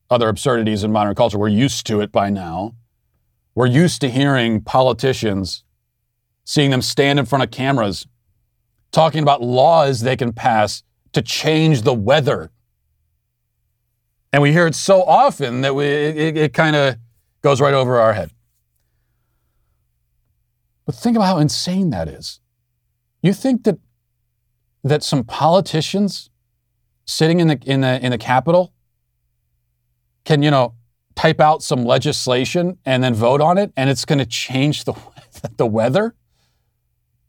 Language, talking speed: English, 150 wpm